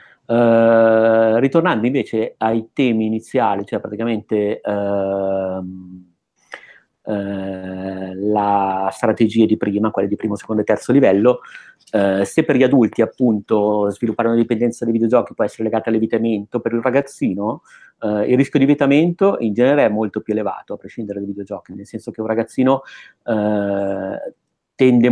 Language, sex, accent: Italian, male, native